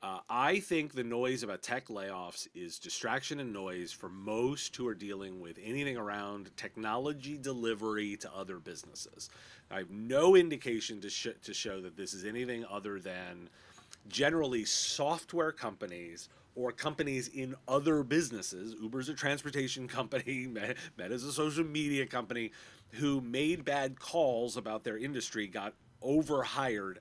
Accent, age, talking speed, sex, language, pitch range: American, 30-49, 145 wpm, male, English, 110-145 Hz